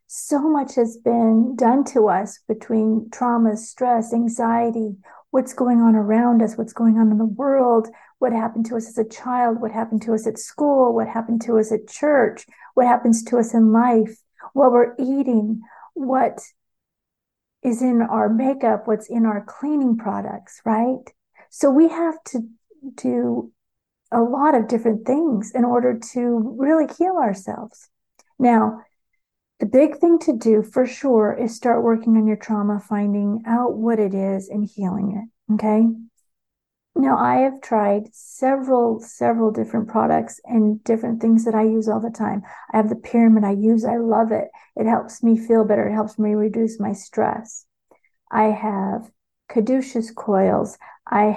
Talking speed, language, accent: 165 wpm, English, American